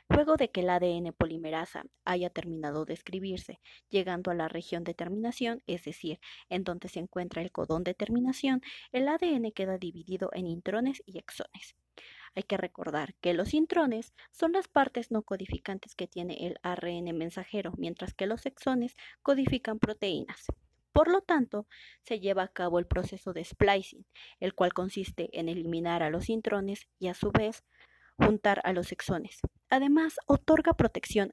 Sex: female